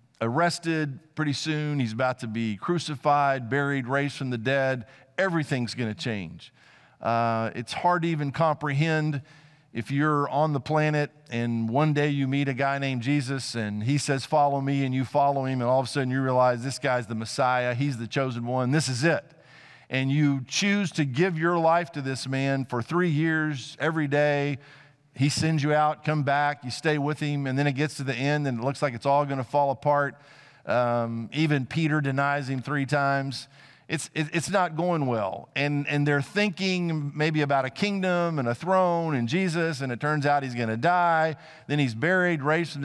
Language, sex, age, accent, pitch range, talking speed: English, male, 50-69, American, 135-165 Hz, 200 wpm